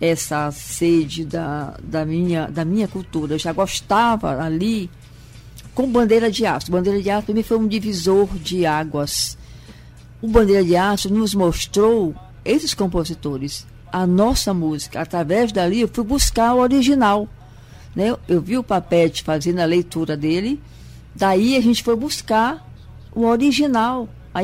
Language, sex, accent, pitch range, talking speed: Portuguese, female, Brazilian, 155-220 Hz, 150 wpm